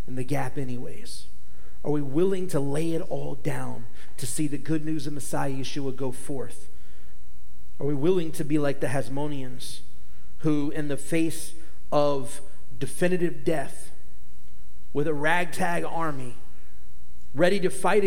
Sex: male